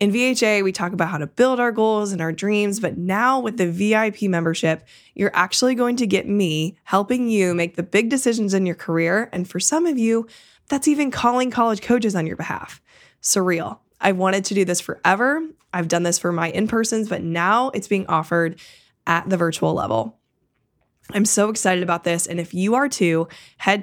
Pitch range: 170-225 Hz